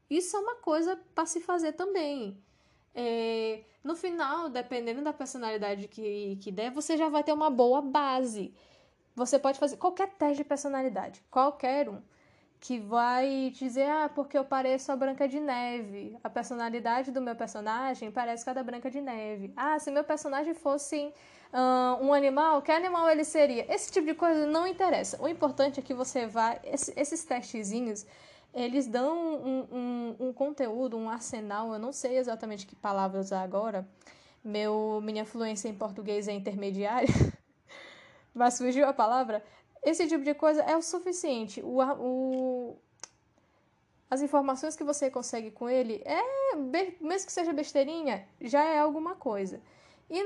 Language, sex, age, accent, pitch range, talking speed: Portuguese, female, 10-29, Brazilian, 230-300 Hz, 160 wpm